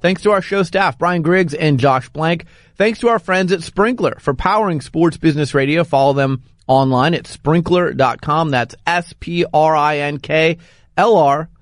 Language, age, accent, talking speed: English, 30-49, American, 145 wpm